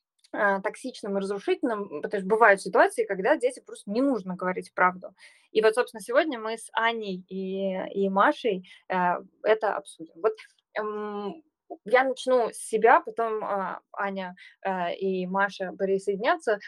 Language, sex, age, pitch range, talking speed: Russian, female, 20-39, 190-250 Hz, 130 wpm